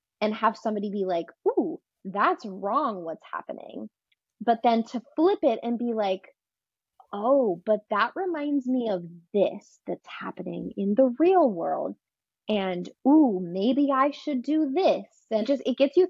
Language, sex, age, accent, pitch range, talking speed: English, female, 20-39, American, 215-310 Hz, 160 wpm